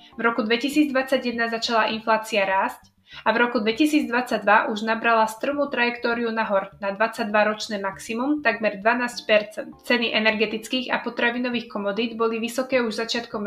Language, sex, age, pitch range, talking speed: Slovak, female, 20-39, 215-250 Hz, 135 wpm